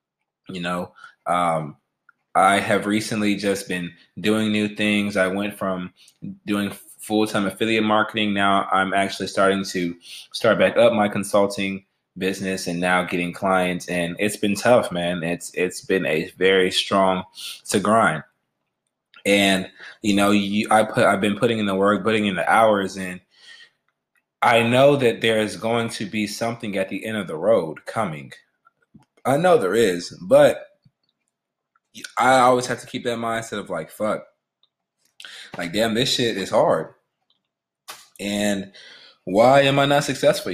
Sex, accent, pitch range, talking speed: male, American, 95-115 Hz, 160 wpm